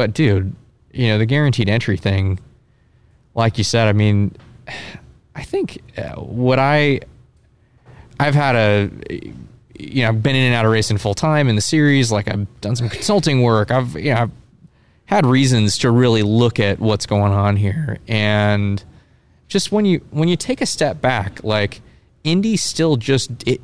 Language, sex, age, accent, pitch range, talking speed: English, male, 20-39, American, 105-135 Hz, 175 wpm